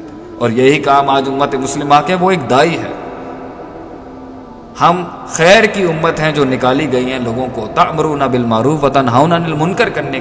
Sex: male